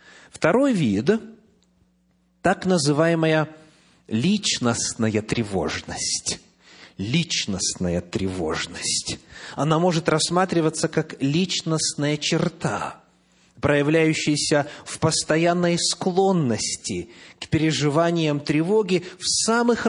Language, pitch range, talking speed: English, 130-180 Hz, 70 wpm